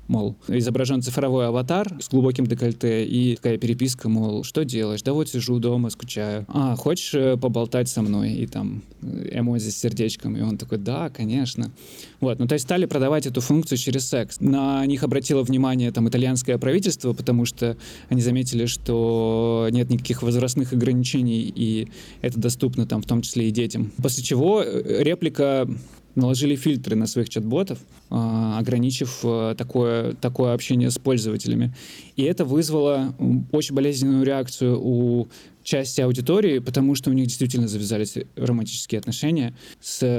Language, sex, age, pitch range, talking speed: Russian, male, 20-39, 115-135 Hz, 150 wpm